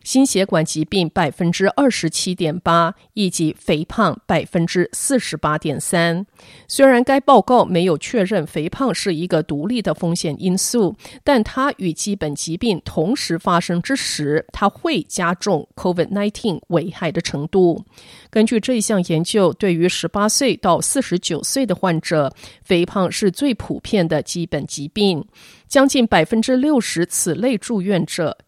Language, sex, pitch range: Chinese, female, 170-235 Hz